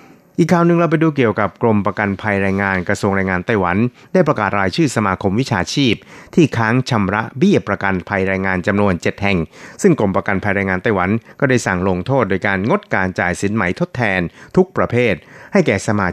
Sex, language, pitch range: male, Thai, 95-130 Hz